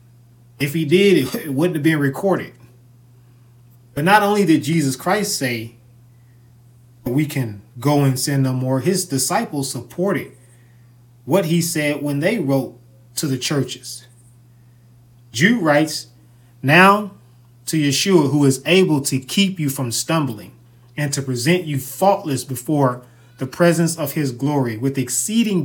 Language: English